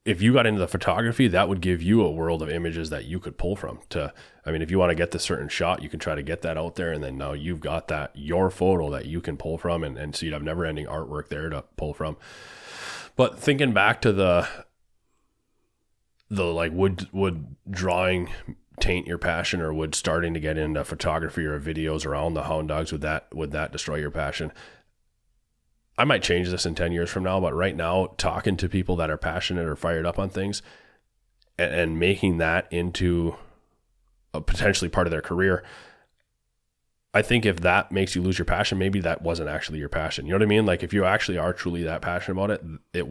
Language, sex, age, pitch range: English, male, 30-49, 80-95 Hz